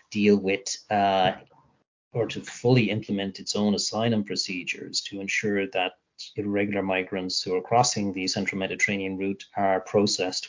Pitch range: 95-110 Hz